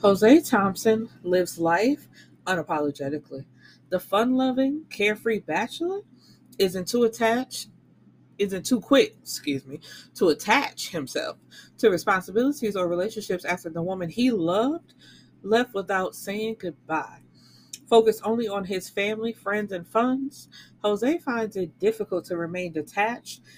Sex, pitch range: female, 180-235 Hz